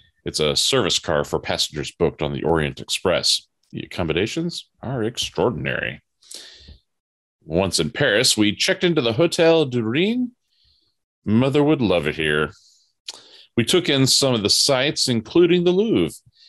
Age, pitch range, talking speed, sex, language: 40-59, 95-140 Hz, 140 wpm, male, English